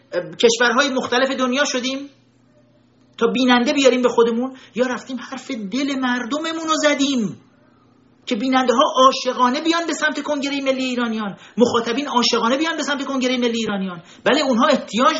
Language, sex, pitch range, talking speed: Persian, male, 220-270 Hz, 145 wpm